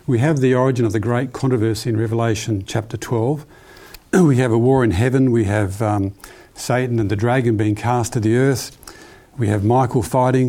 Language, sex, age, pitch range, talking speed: English, male, 50-69, 110-130 Hz, 195 wpm